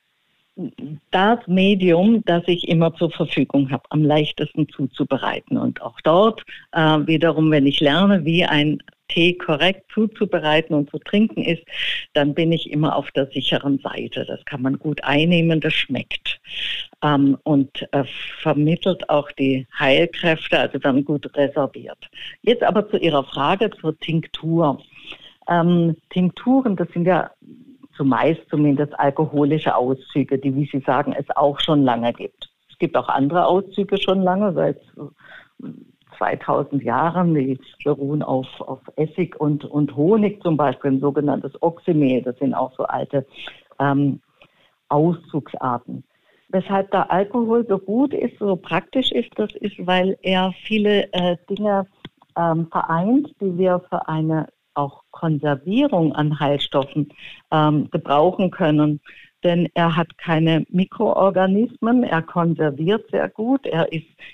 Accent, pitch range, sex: German, 145-185 Hz, female